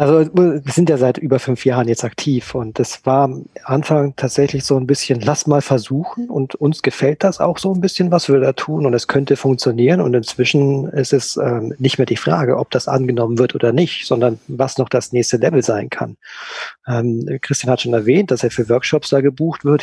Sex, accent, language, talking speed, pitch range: male, German, German, 220 wpm, 125-150 Hz